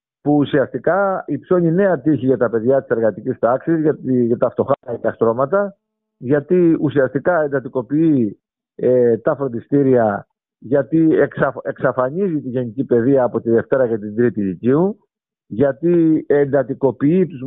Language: Greek